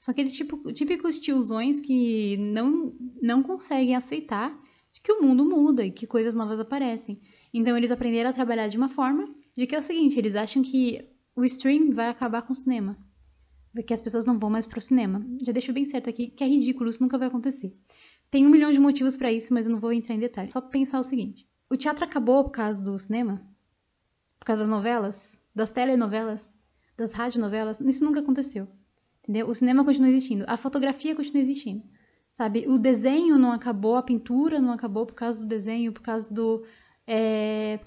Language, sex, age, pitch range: Portuguese, female, 10-29, 220-260 Hz